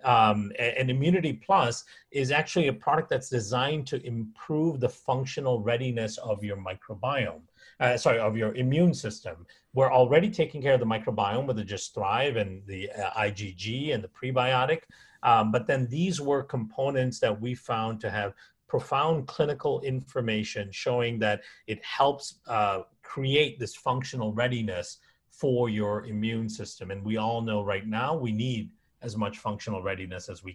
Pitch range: 105-130 Hz